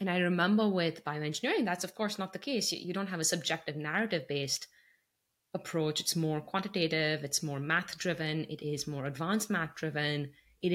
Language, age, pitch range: English, 20-39, 155-200 Hz